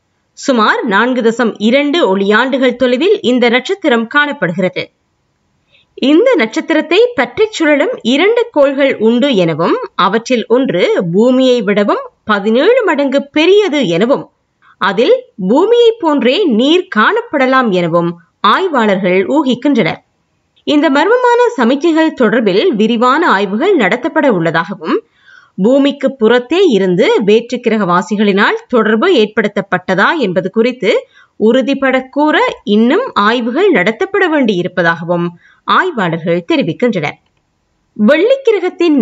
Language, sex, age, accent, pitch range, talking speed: Tamil, female, 20-39, native, 215-335 Hz, 65 wpm